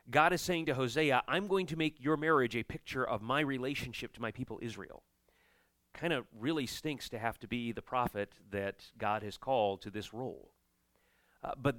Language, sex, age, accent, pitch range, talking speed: English, male, 40-59, American, 115-155 Hz, 200 wpm